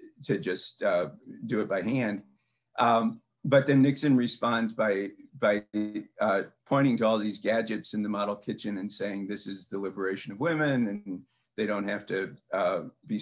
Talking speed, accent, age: 175 wpm, American, 50-69